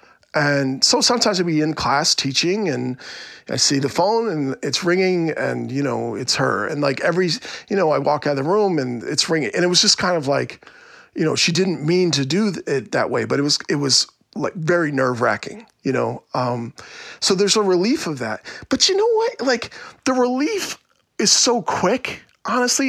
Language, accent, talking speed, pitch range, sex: English, American, 210 wpm, 140-190 Hz, male